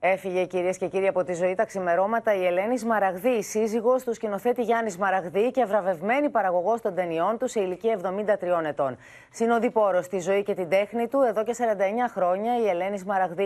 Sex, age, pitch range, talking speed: female, 30-49, 170-220 Hz, 185 wpm